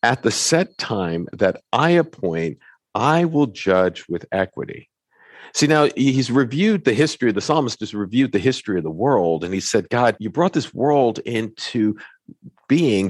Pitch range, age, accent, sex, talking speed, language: 100-145 Hz, 50-69, American, male, 180 wpm, English